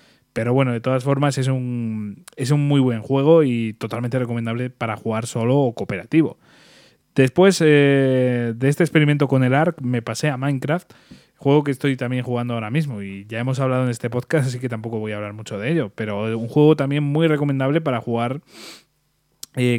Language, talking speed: Spanish, 195 wpm